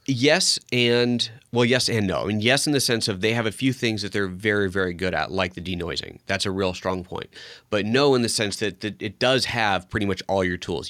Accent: American